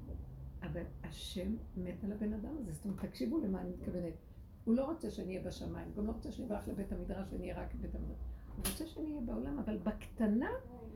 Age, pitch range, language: 50-69, 185-230 Hz, Hebrew